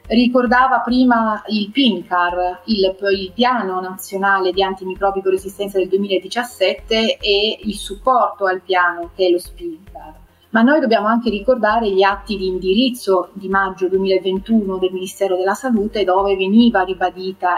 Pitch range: 185-220 Hz